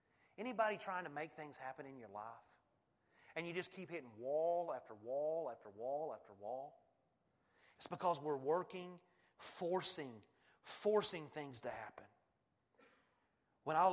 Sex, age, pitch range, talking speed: male, 30-49, 135-180 Hz, 140 wpm